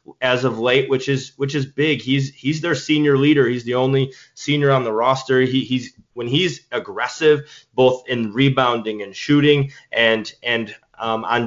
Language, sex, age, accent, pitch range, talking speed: English, male, 20-39, American, 120-140 Hz, 180 wpm